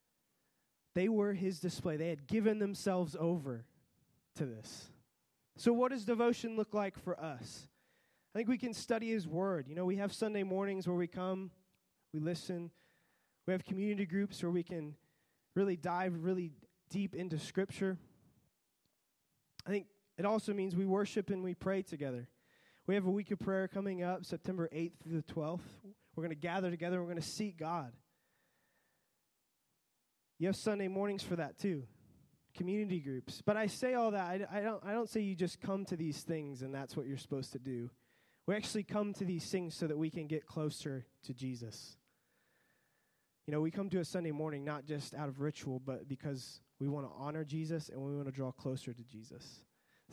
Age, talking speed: 20-39, 190 wpm